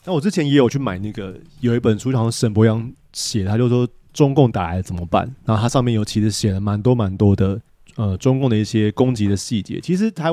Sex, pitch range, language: male, 100-130 Hz, Chinese